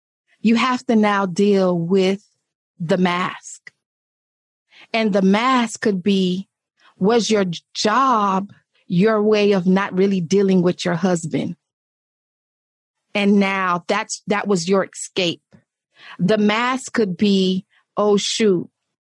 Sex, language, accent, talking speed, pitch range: female, English, American, 120 wpm, 190-250 Hz